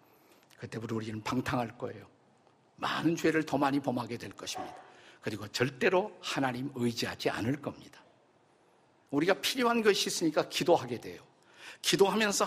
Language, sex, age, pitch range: Korean, male, 50-69, 130-180 Hz